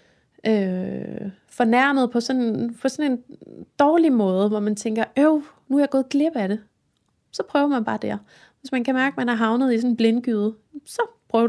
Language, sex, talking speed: Danish, female, 205 wpm